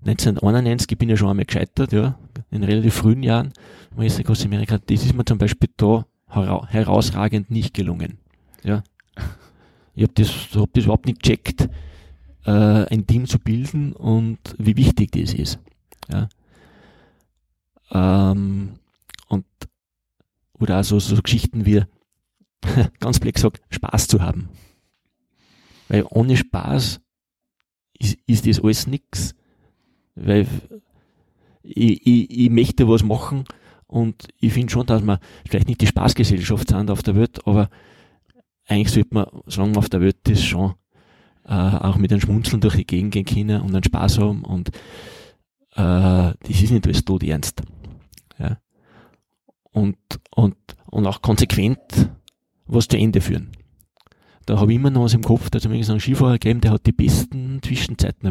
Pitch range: 100-115 Hz